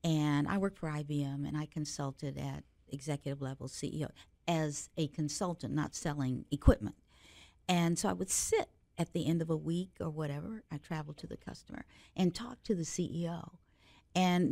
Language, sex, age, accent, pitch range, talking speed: English, female, 50-69, American, 140-190 Hz, 175 wpm